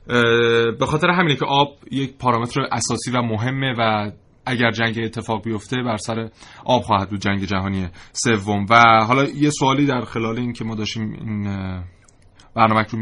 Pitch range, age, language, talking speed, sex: 105-125 Hz, 30-49, Persian, 160 wpm, male